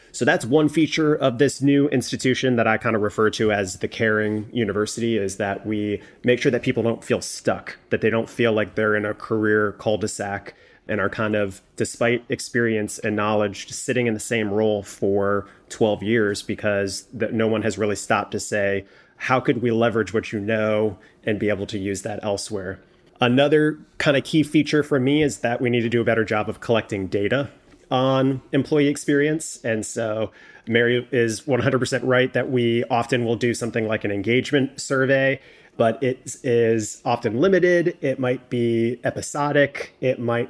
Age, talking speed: 30-49, 185 wpm